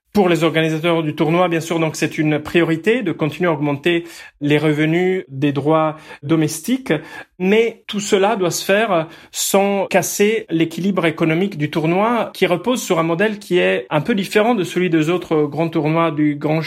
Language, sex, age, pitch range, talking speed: French, male, 30-49, 150-180 Hz, 180 wpm